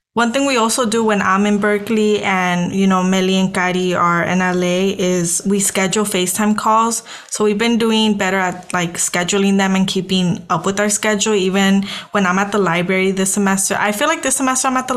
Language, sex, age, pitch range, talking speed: English, female, 20-39, 185-210 Hz, 215 wpm